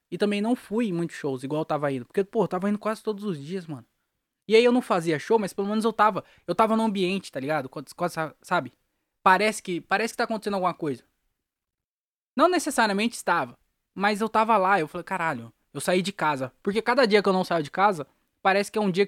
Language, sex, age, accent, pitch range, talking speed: Portuguese, male, 20-39, Brazilian, 145-210 Hz, 240 wpm